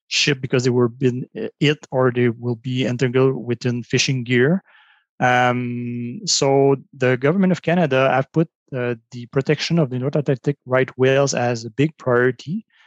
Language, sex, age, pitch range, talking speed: English, male, 30-49, 125-150 Hz, 165 wpm